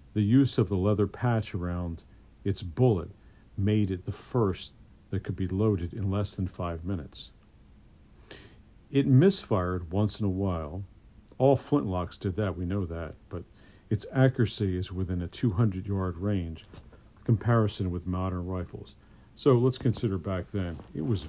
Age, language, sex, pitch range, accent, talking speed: 50-69, English, male, 90-110 Hz, American, 150 wpm